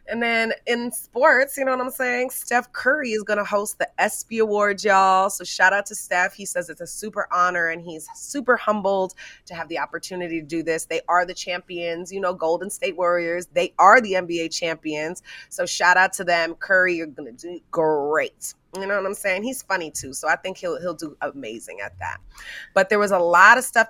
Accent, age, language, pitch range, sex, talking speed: American, 30-49, English, 170-220 Hz, female, 225 wpm